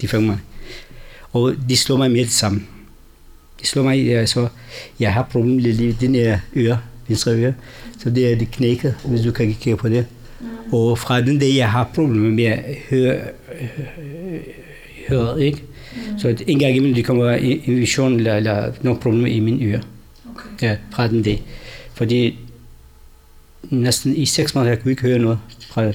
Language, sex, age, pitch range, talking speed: Danish, male, 60-79, 110-130 Hz, 180 wpm